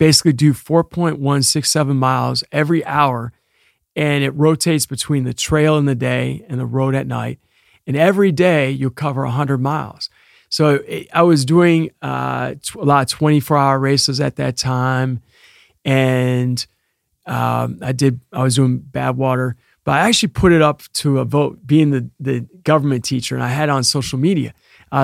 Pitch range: 130-155 Hz